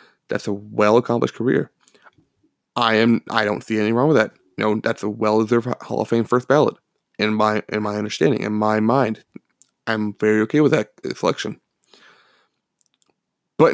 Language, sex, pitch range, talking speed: English, male, 110-145 Hz, 170 wpm